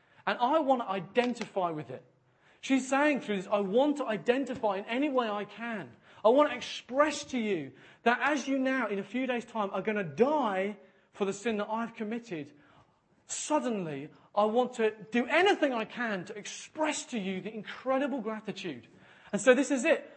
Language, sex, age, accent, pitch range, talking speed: English, male, 30-49, British, 180-255 Hz, 195 wpm